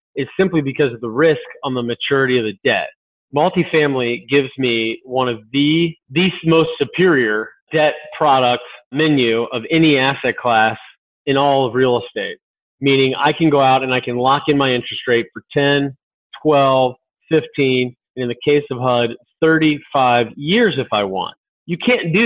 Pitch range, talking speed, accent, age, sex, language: 130-165 Hz, 175 wpm, American, 30-49, male, English